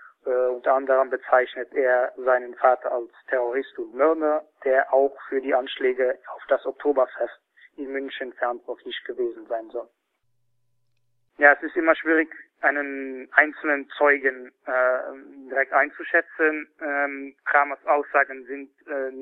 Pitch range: 125-150 Hz